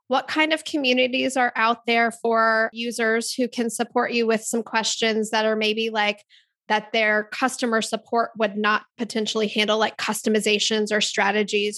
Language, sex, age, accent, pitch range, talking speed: English, female, 20-39, American, 210-240 Hz, 165 wpm